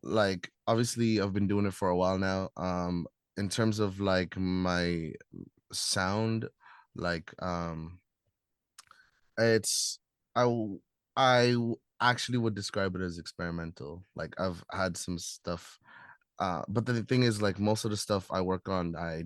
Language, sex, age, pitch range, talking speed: English, male, 20-39, 90-110 Hz, 145 wpm